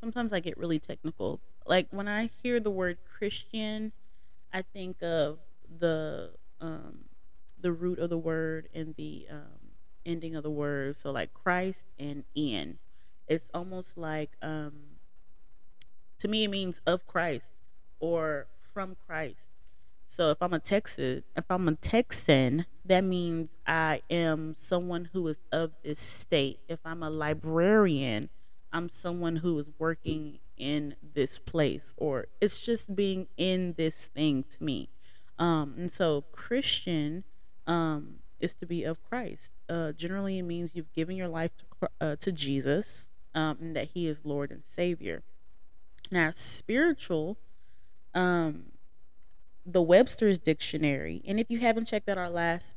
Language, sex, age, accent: English, female, 20-39, American